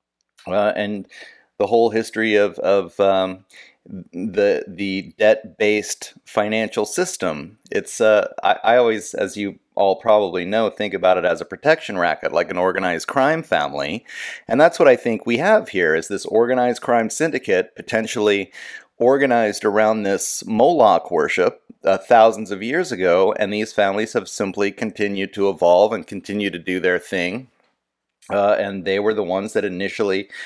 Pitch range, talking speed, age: 100-110 Hz, 160 wpm, 30-49